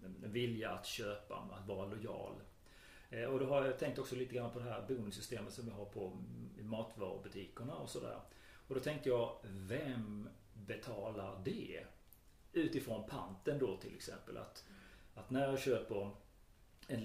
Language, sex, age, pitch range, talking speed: Swedish, male, 40-59, 105-130 Hz, 155 wpm